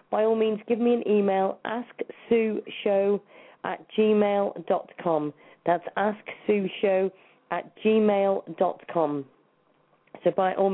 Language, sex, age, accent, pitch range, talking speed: English, female, 30-49, British, 190-230 Hz, 115 wpm